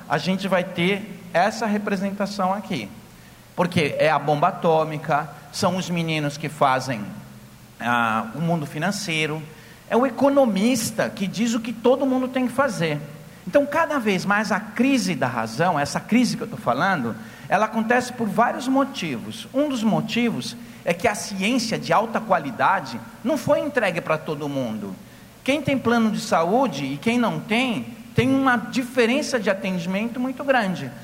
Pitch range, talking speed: 185-250 Hz, 160 wpm